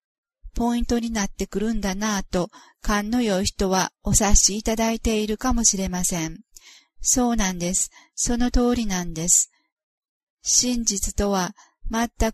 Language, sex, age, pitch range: Japanese, female, 40-59, 195-240 Hz